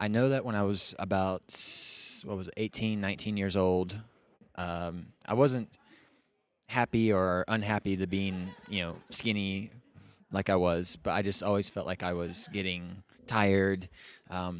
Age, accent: 20-39, American